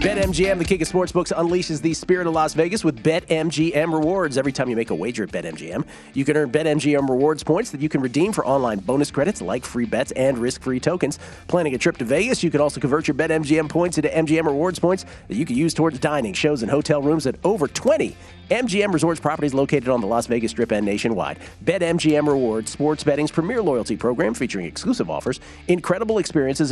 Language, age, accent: English, 40-59, American